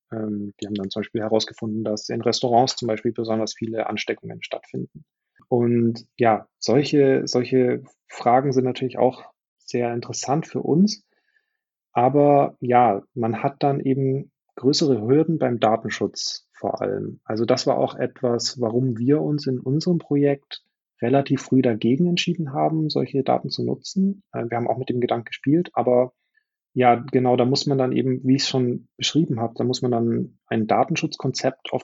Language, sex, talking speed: German, male, 165 wpm